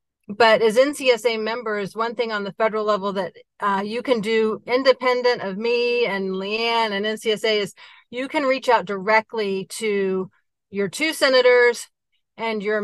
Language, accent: English, American